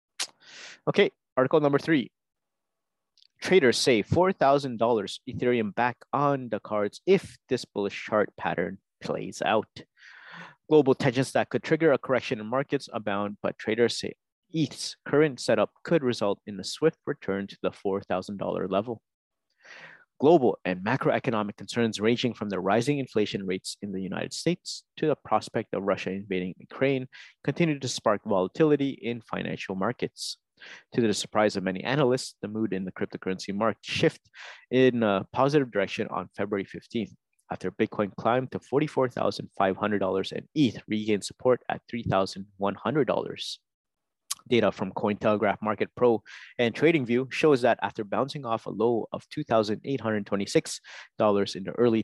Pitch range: 100-135 Hz